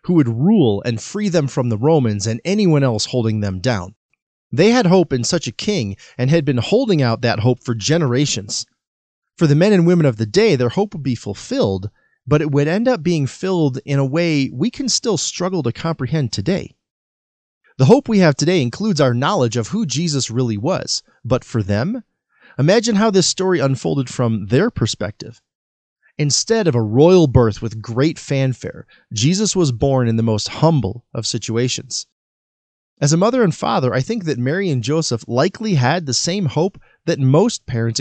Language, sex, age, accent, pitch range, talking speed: English, male, 30-49, American, 115-170 Hz, 190 wpm